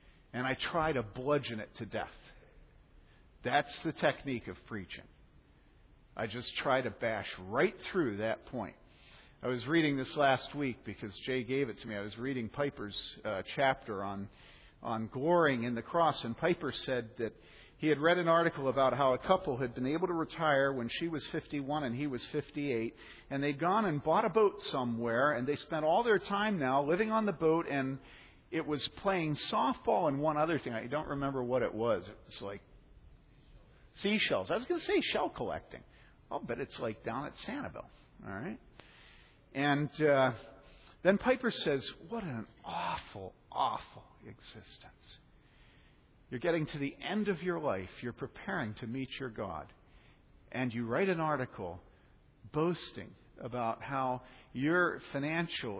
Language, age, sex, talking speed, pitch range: English, 50-69, male, 170 wpm, 120-160 Hz